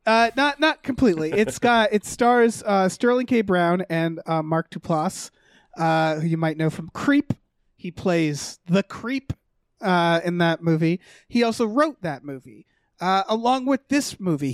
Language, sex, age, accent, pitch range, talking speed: English, male, 30-49, American, 165-215 Hz, 165 wpm